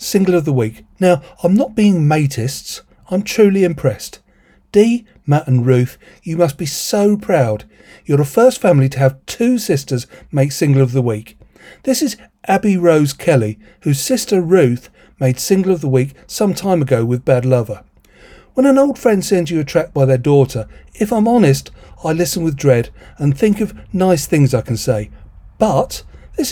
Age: 40-59